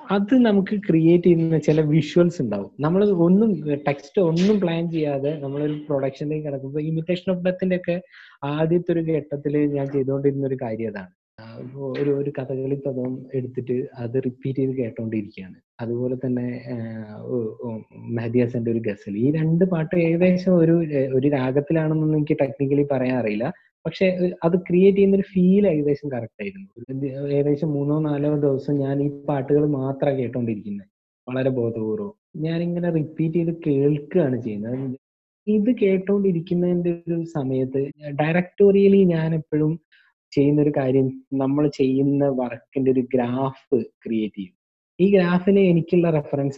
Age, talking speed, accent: 20-39, 100 wpm, Indian